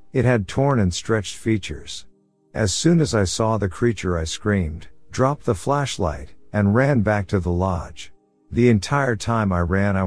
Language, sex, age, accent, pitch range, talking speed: English, male, 50-69, American, 90-115 Hz, 180 wpm